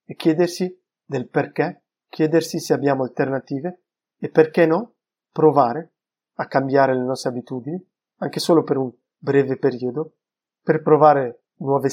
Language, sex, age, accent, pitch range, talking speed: Italian, male, 30-49, native, 135-165 Hz, 130 wpm